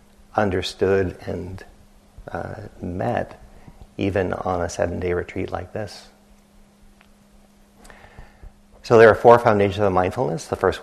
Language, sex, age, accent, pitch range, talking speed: English, male, 50-69, American, 90-120 Hz, 110 wpm